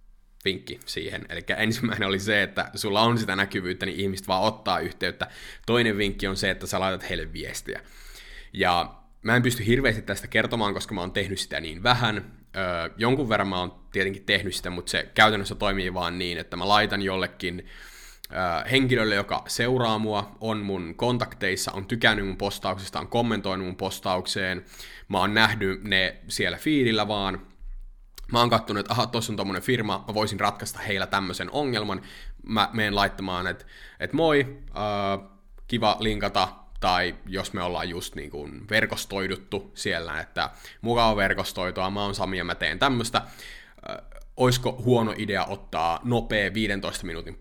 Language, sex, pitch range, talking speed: Finnish, male, 95-110 Hz, 165 wpm